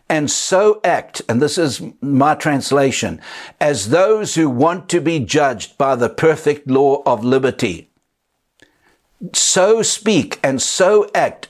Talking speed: 135 wpm